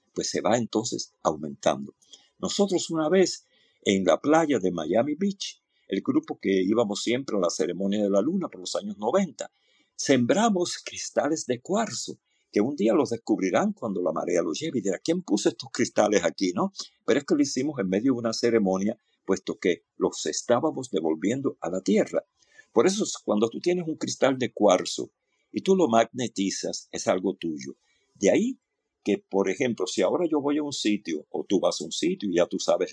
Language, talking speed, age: Spanish, 195 wpm, 50-69